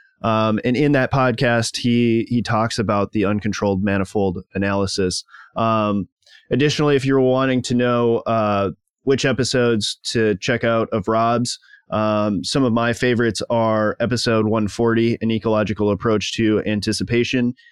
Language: English